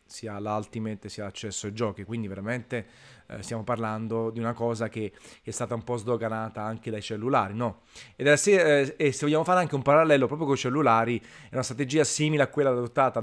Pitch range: 110-125 Hz